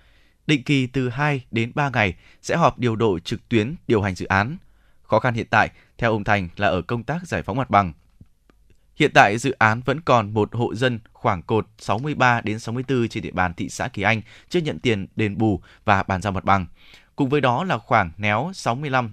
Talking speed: 220 wpm